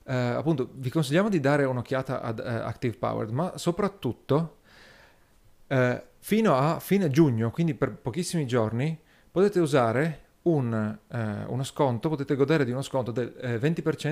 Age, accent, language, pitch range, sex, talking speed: 40-59, native, Italian, 115-150 Hz, male, 150 wpm